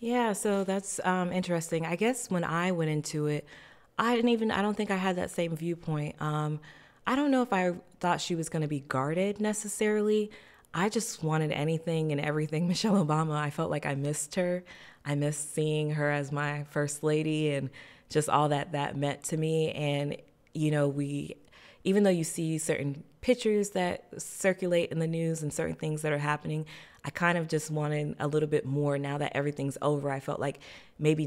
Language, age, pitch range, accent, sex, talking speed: English, 20-39, 140-170 Hz, American, female, 200 wpm